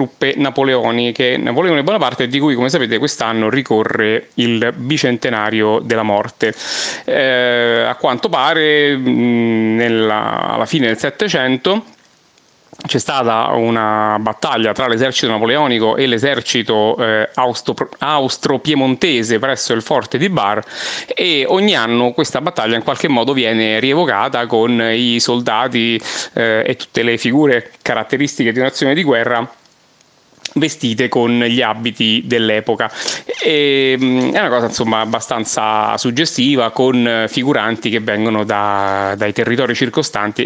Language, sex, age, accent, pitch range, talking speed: Italian, male, 30-49, native, 110-135 Hz, 115 wpm